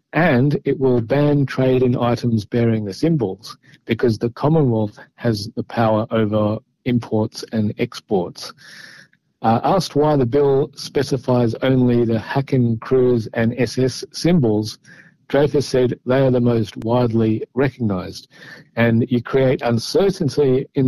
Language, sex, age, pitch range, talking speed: Hebrew, male, 50-69, 115-140 Hz, 130 wpm